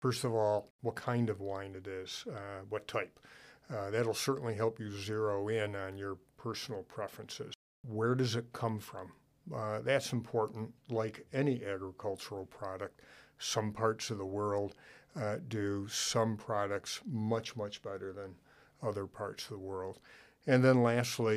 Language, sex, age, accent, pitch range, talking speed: English, male, 60-79, American, 100-120 Hz, 155 wpm